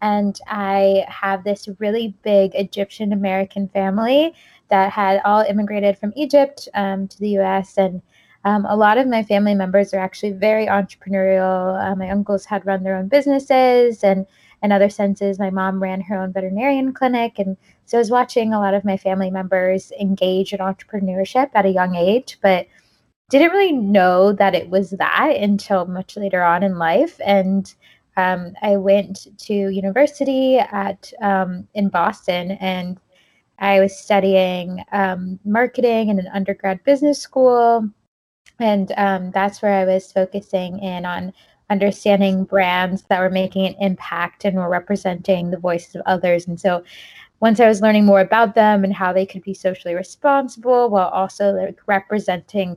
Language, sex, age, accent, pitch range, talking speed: English, female, 20-39, American, 190-210 Hz, 165 wpm